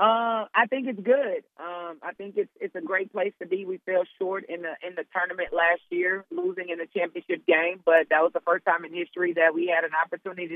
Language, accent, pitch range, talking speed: English, American, 165-195 Hz, 240 wpm